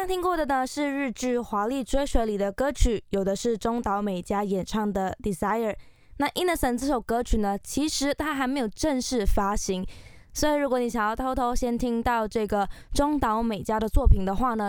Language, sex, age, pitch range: Chinese, female, 20-39, 205-270 Hz